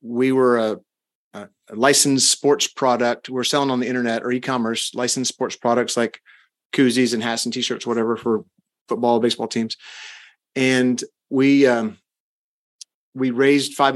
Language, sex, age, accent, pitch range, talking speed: English, male, 30-49, American, 120-145 Hz, 145 wpm